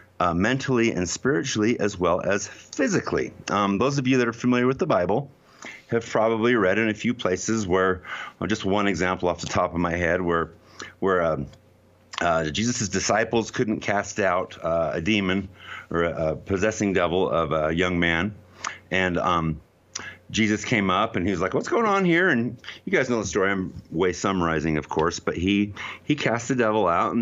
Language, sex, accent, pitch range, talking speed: English, male, American, 90-125 Hz, 195 wpm